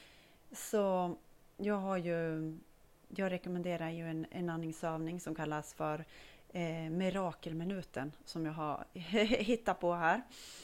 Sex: female